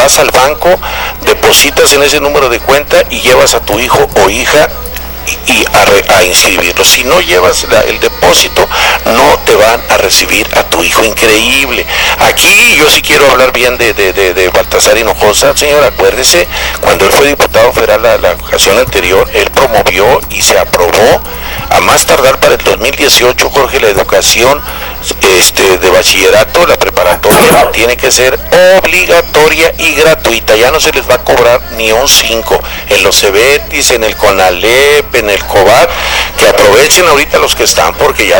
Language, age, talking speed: English, 50-69, 175 wpm